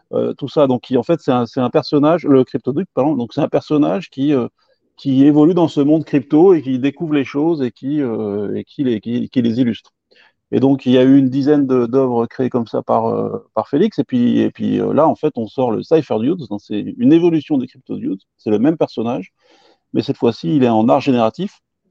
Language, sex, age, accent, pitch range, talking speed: English, male, 40-59, French, 125-155 Hz, 250 wpm